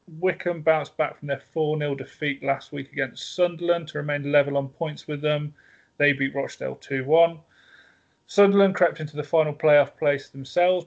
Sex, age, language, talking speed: male, 30-49, English, 165 wpm